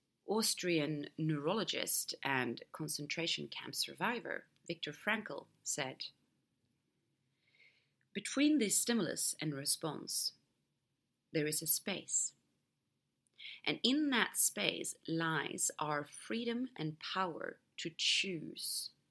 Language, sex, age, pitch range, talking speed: English, female, 30-49, 150-195 Hz, 90 wpm